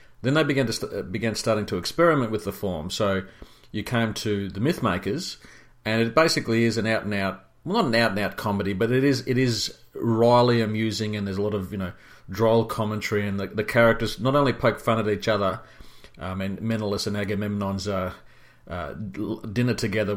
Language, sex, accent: English, male, Australian